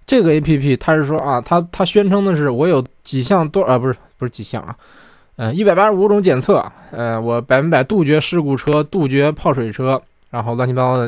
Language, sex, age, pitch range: Chinese, male, 20-39, 120-170 Hz